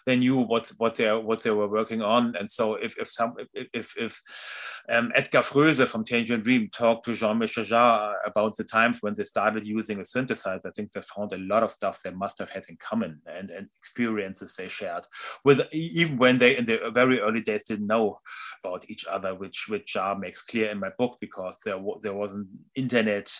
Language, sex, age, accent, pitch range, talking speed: Dutch, male, 30-49, German, 105-125 Hz, 215 wpm